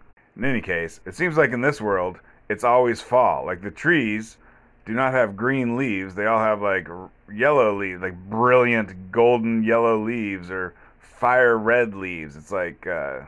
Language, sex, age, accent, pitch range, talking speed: English, male, 30-49, American, 95-115 Hz, 165 wpm